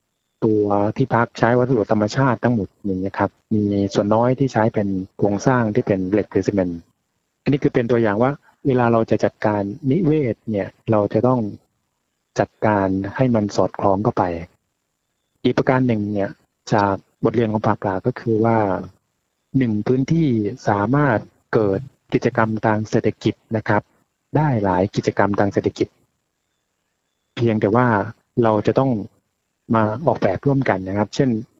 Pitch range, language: 105-125 Hz, Thai